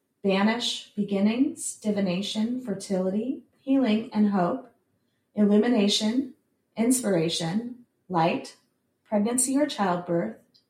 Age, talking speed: 30-49, 75 wpm